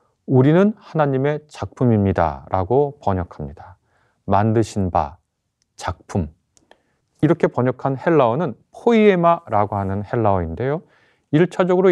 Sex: male